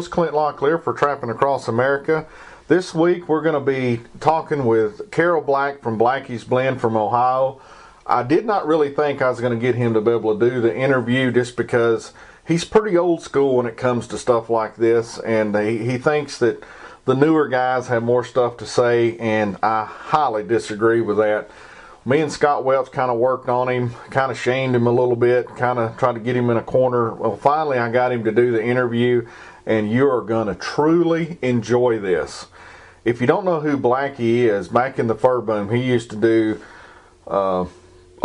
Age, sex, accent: 40-59, male, American